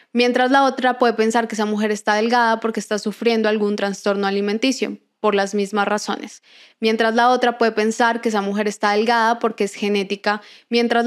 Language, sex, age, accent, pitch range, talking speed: Spanish, female, 10-29, Colombian, 215-240 Hz, 185 wpm